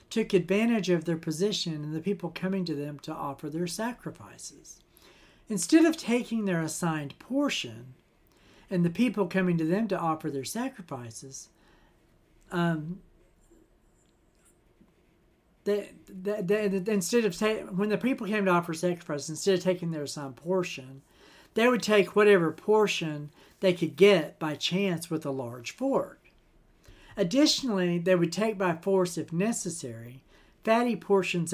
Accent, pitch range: American, 150-205 Hz